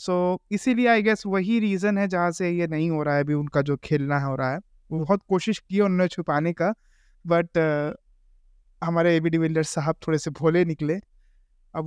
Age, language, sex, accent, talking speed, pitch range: 20-39, Hindi, male, native, 200 wpm, 170-235 Hz